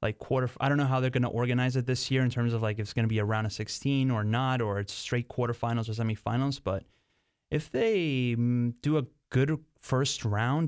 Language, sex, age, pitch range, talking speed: English, male, 30-49, 105-125 Hz, 235 wpm